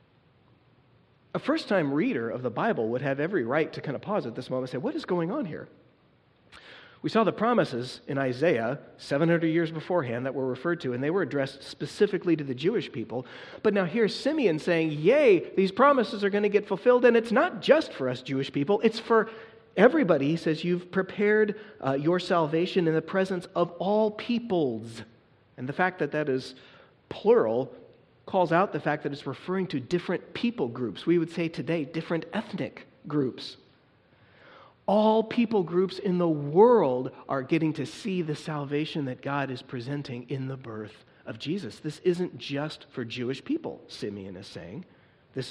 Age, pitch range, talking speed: 30-49, 135-190 Hz, 185 wpm